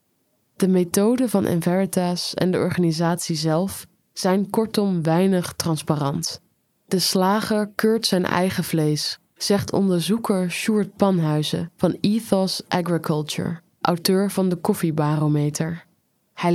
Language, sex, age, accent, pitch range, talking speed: English, female, 20-39, Dutch, 170-195 Hz, 110 wpm